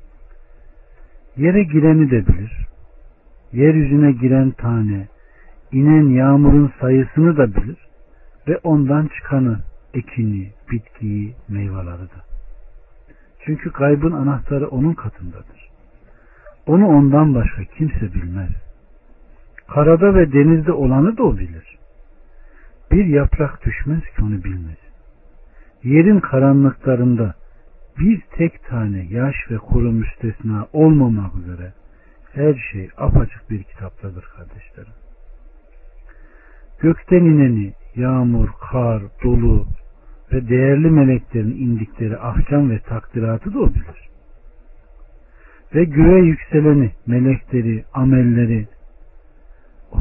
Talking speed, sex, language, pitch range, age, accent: 95 wpm, male, Turkish, 100-145 Hz, 60-79, native